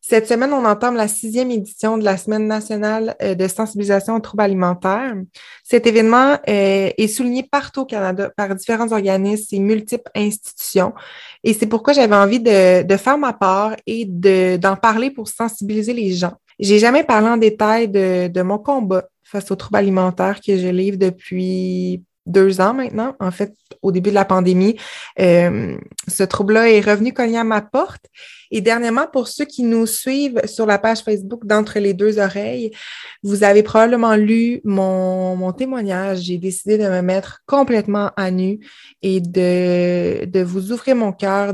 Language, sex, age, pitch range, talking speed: French, female, 20-39, 190-225 Hz, 175 wpm